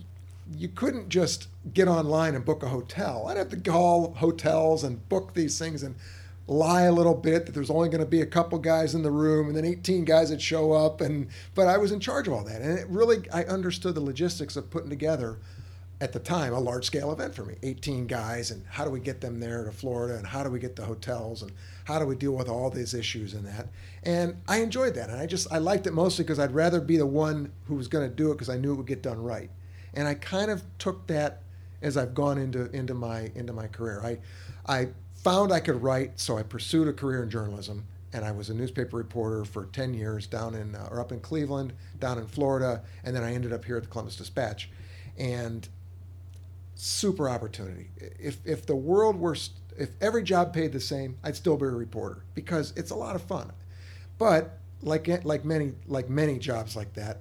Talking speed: 230 wpm